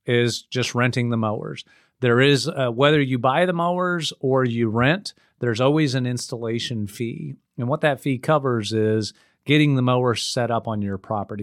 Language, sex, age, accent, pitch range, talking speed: English, male, 40-59, American, 110-140 Hz, 185 wpm